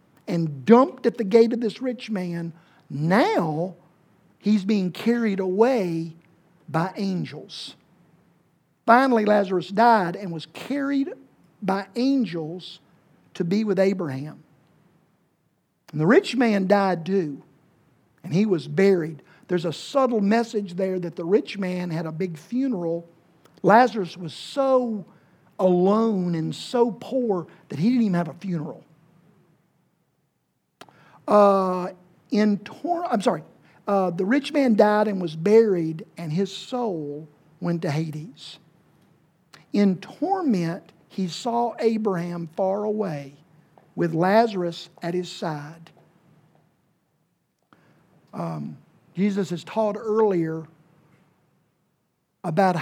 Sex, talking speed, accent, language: male, 115 wpm, American, English